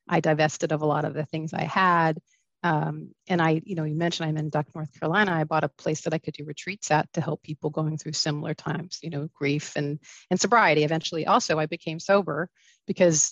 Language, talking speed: English, 230 wpm